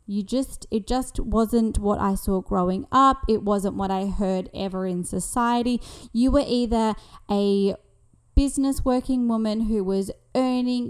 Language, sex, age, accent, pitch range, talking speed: English, female, 20-39, Australian, 205-250 Hz, 155 wpm